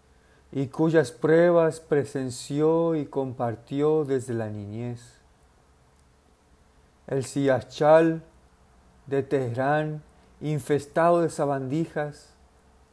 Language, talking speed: Spanish, 75 wpm